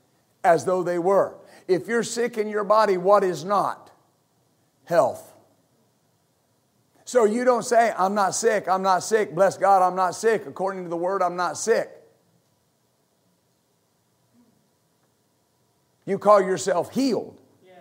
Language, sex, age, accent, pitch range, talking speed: English, male, 50-69, American, 200-235 Hz, 135 wpm